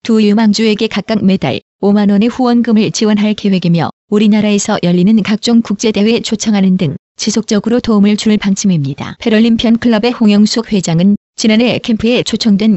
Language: Korean